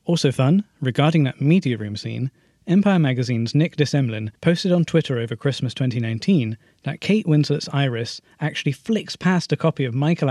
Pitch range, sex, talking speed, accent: 130-185 Hz, male, 165 wpm, British